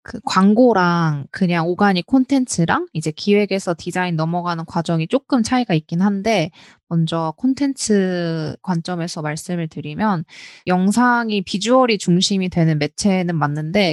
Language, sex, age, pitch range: Korean, female, 20-39, 165-205 Hz